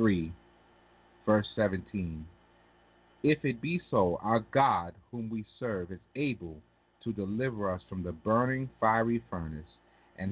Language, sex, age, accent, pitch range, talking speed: English, male, 40-59, American, 100-125 Hz, 130 wpm